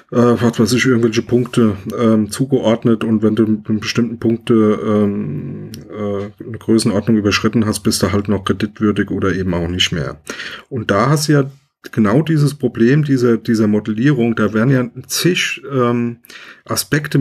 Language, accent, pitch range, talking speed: German, German, 110-135 Hz, 160 wpm